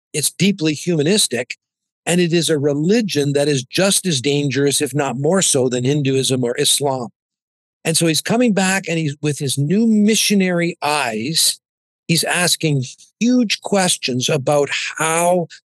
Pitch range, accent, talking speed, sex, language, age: 145-190 Hz, American, 150 wpm, male, English, 50-69